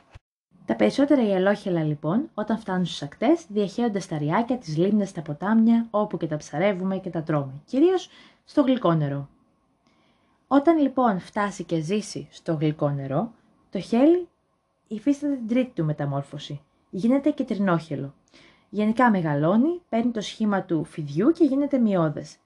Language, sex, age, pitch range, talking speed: Greek, female, 20-39, 165-240 Hz, 140 wpm